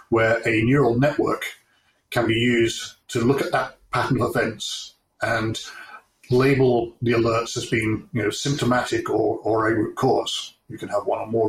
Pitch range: 115-135 Hz